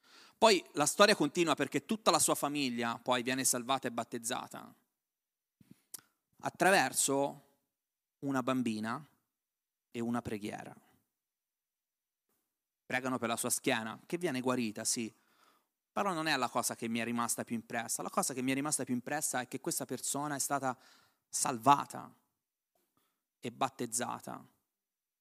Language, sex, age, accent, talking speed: Italian, male, 30-49, native, 135 wpm